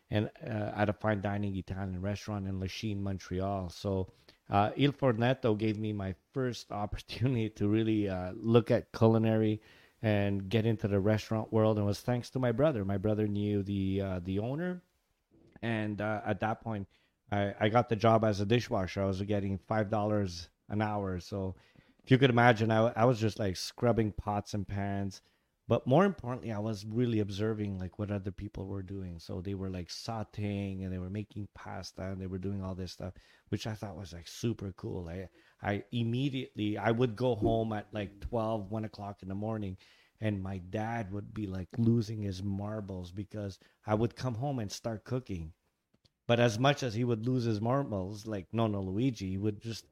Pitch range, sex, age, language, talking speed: 100-115 Hz, male, 30-49, English, 195 wpm